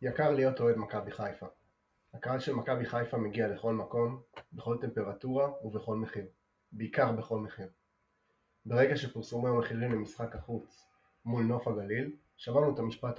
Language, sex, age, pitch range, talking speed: Hebrew, male, 30-49, 110-135 Hz, 140 wpm